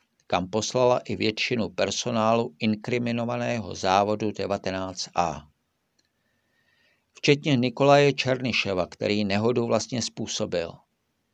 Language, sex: Czech, male